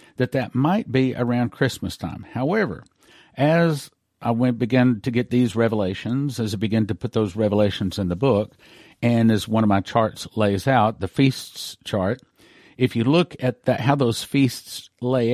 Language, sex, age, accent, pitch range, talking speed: English, male, 50-69, American, 105-135 Hz, 180 wpm